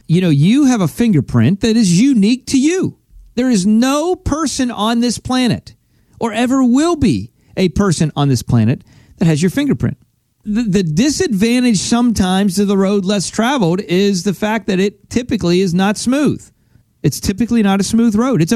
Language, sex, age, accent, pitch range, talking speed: English, male, 40-59, American, 140-220 Hz, 180 wpm